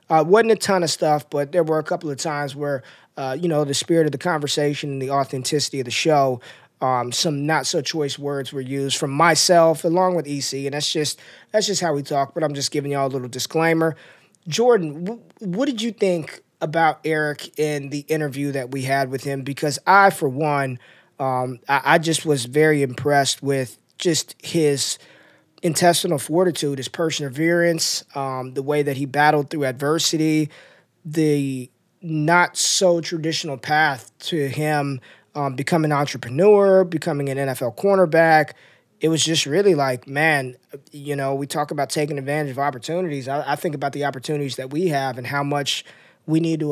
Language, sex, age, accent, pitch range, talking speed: English, male, 20-39, American, 140-165 Hz, 180 wpm